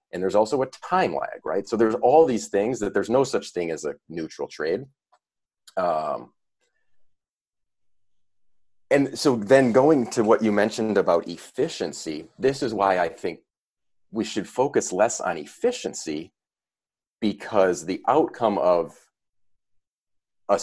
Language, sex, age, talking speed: English, male, 30-49, 140 wpm